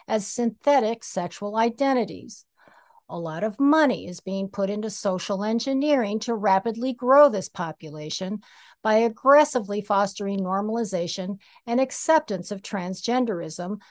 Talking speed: 115 wpm